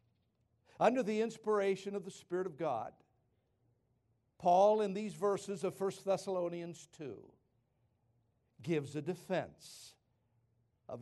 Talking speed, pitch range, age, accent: 110 wpm, 125-195 Hz, 60-79, American